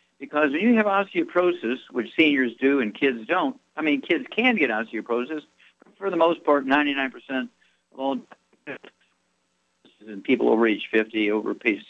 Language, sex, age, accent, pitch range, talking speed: English, male, 60-79, American, 110-140 Hz, 165 wpm